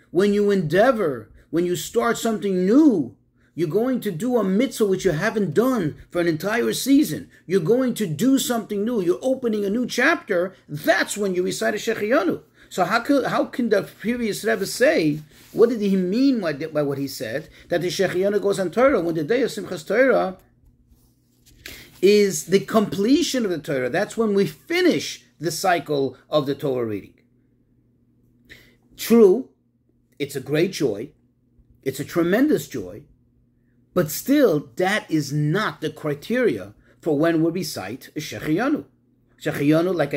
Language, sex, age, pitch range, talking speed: English, male, 40-59, 145-215 Hz, 160 wpm